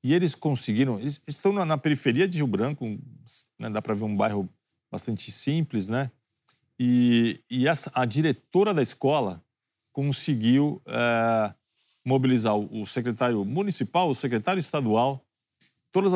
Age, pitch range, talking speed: 50-69, 115-145 Hz, 135 wpm